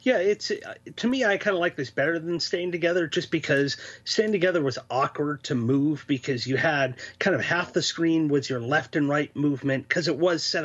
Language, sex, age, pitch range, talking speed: English, male, 30-49, 140-170 Hz, 220 wpm